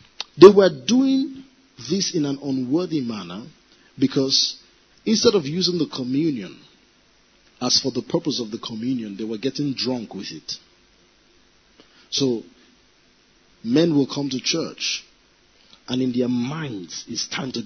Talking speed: 135 wpm